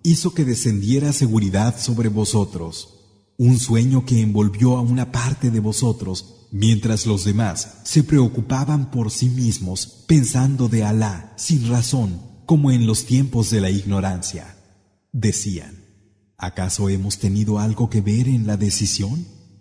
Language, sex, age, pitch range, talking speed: Arabic, male, 40-59, 100-125 Hz, 140 wpm